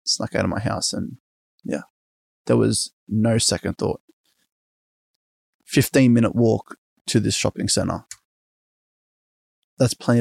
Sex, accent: male, Australian